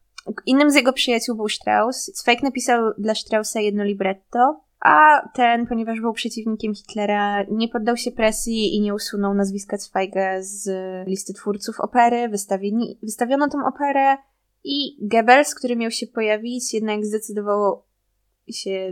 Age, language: 20-39, Polish